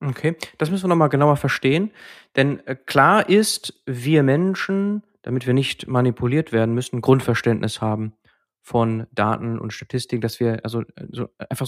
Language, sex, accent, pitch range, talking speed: German, male, German, 115-140 Hz, 150 wpm